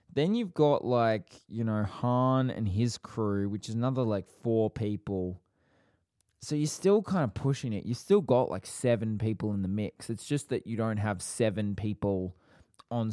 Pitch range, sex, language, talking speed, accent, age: 100-120 Hz, male, English, 190 wpm, Australian, 20-39